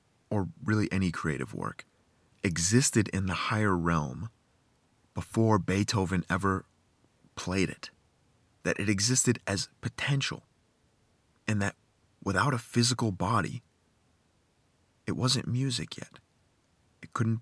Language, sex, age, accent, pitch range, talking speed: English, male, 30-49, American, 85-115 Hz, 110 wpm